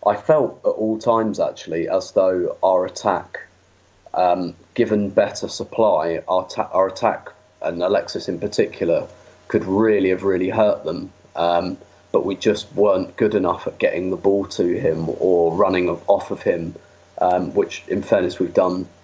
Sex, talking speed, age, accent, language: male, 160 wpm, 30-49, British, English